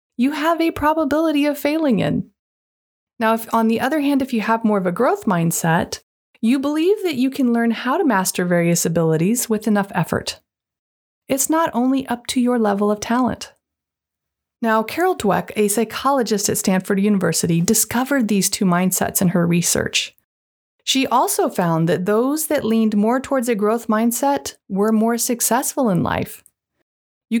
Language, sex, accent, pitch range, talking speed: English, female, American, 190-255 Hz, 170 wpm